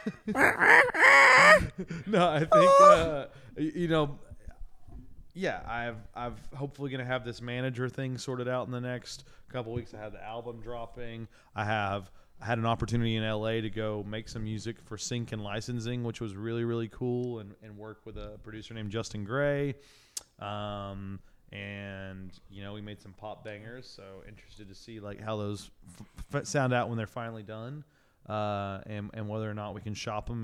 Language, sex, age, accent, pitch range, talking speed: English, male, 20-39, American, 105-130 Hz, 185 wpm